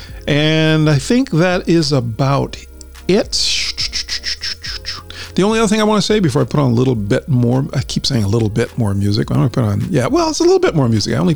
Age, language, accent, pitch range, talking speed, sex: 50-69, English, American, 115-155 Hz, 240 wpm, male